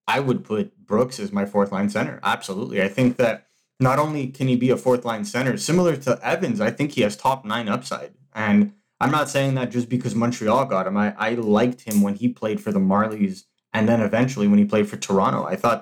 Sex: male